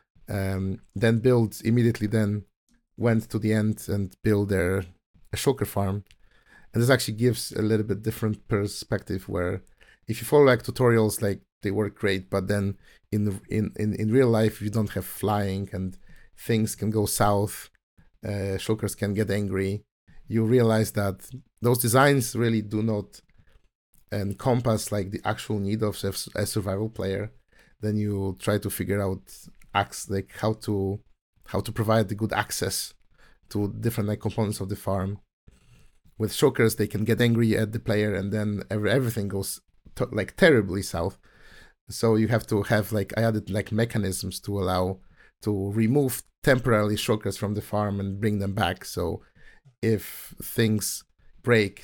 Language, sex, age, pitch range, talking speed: English, male, 50-69, 100-110 Hz, 160 wpm